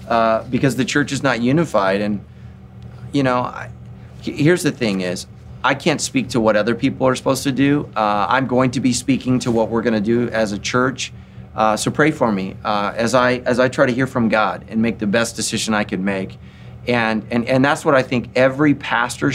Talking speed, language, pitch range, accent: 225 wpm, English, 110-130 Hz, American